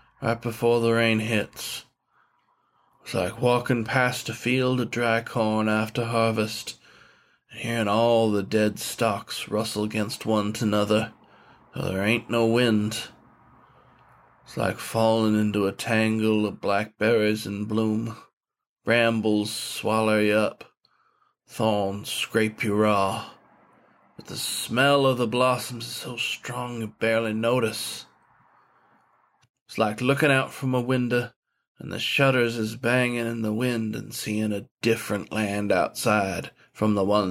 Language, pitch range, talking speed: English, 105-120 Hz, 140 wpm